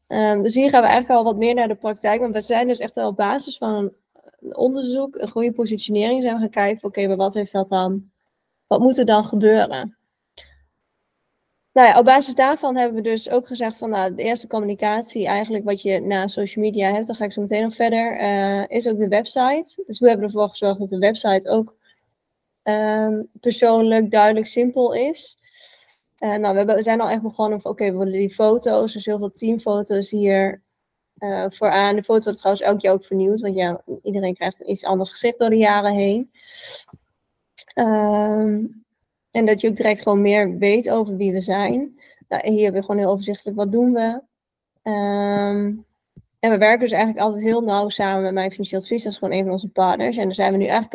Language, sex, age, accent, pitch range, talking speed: Dutch, female, 20-39, Dutch, 200-230 Hz, 215 wpm